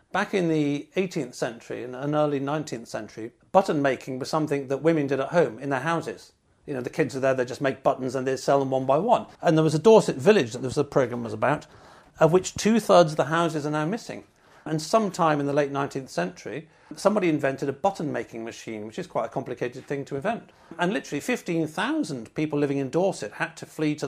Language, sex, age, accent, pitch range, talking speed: English, male, 50-69, British, 135-165 Hz, 220 wpm